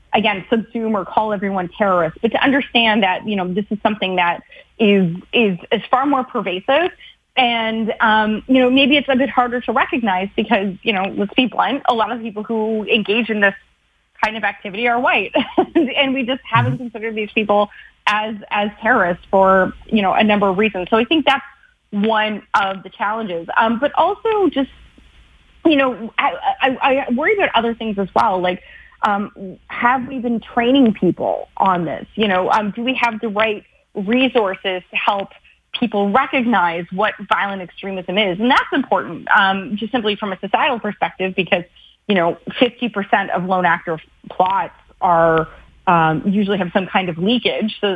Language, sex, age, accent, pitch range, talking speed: English, female, 30-49, American, 190-245 Hz, 180 wpm